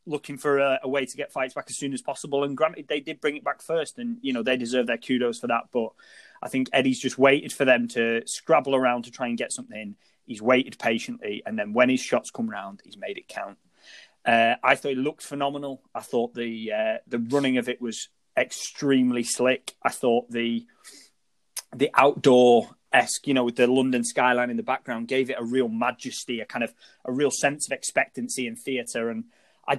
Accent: British